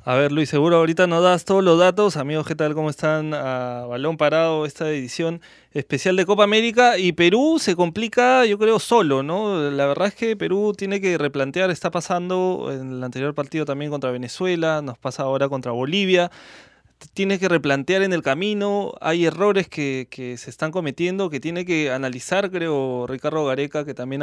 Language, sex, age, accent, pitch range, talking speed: Spanish, male, 20-39, Argentinian, 140-180 Hz, 190 wpm